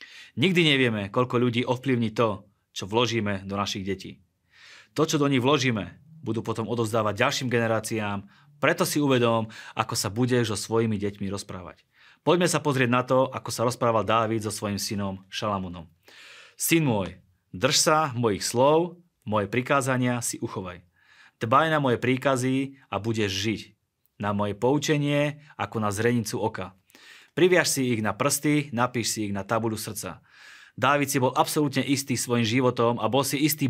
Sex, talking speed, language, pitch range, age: male, 160 wpm, Slovak, 105-130 Hz, 30-49